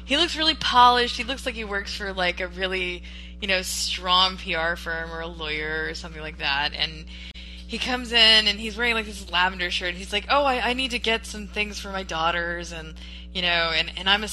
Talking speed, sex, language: 235 wpm, female, English